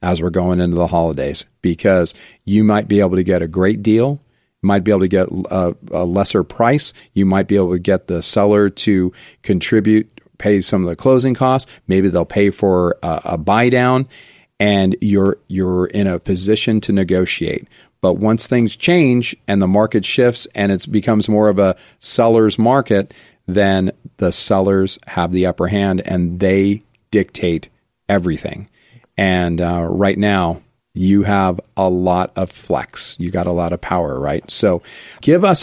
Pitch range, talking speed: 95-115 Hz, 175 wpm